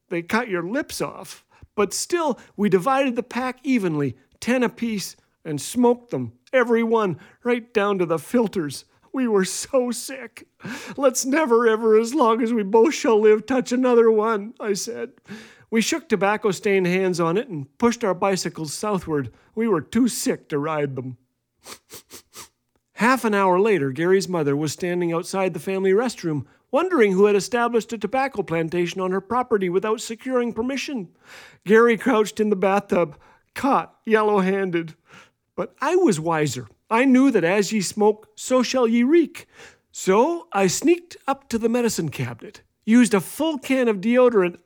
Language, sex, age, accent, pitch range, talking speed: English, male, 40-59, American, 185-245 Hz, 165 wpm